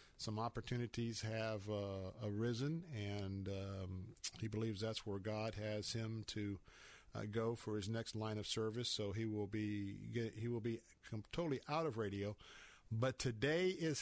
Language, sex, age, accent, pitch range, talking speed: English, male, 50-69, American, 105-125 Hz, 165 wpm